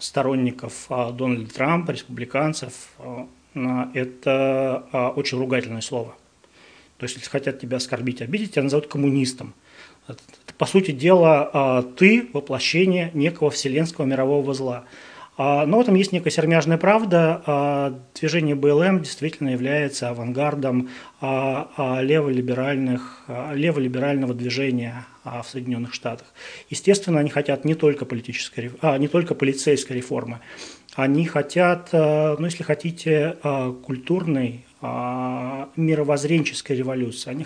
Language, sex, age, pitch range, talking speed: Russian, male, 30-49, 130-160 Hz, 100 wpm